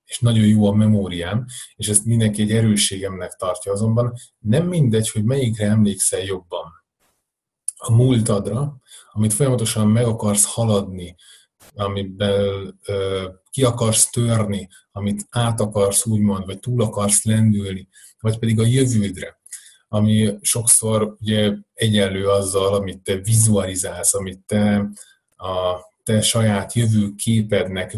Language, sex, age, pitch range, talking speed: Hungarian, male, 30-49, 100-115 Hz, 120 wpm